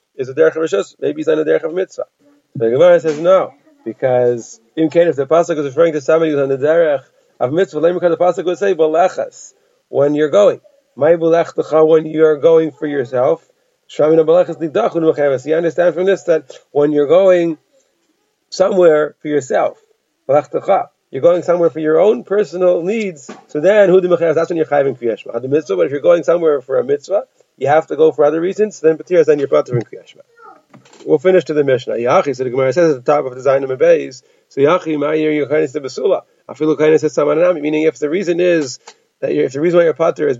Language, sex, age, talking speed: English, male, 40-59, 200 wpm